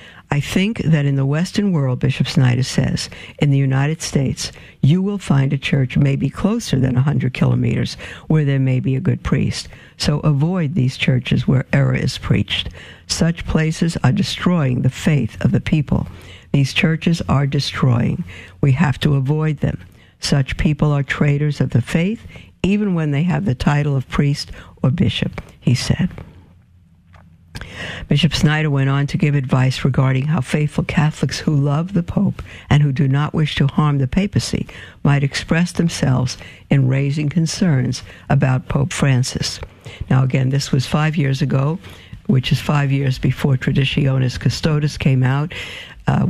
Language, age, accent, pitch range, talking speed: English, 60-79, American, 130-155 Hz, 165 wpm